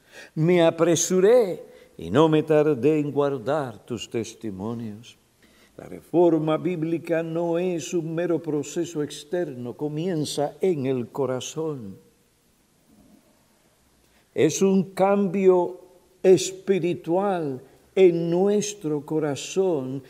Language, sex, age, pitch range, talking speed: Spanish, male, 60-79, 145-185 Hz, 90 wpm